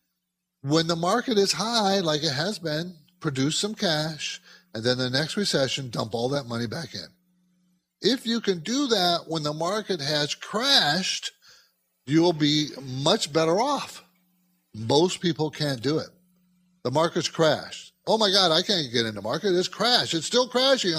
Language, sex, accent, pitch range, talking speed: English, male, American, 130-180 Hz, 175 wpm